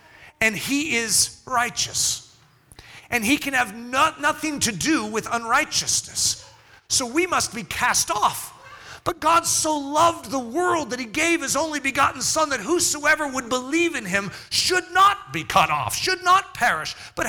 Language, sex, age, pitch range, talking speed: English, male, 40-59, 230-315 Hz, 165 wpm